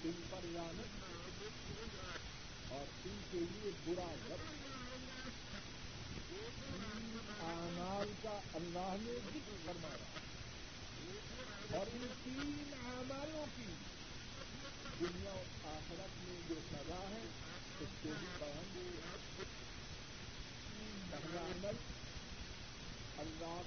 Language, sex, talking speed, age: Urdu, male, 85 wpm, 50-69